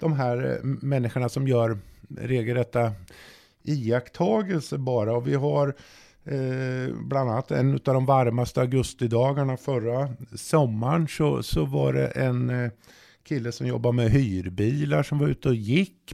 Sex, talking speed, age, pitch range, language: male, 140 wpm, 50-69, 115-145 Hz, Swedish